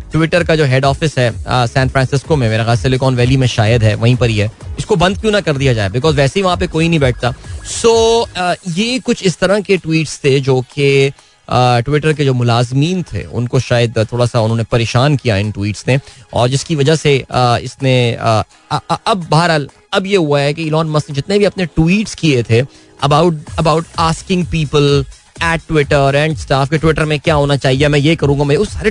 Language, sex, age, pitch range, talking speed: Hindi, male, 20-39, 125-160 Hz, 175 wpm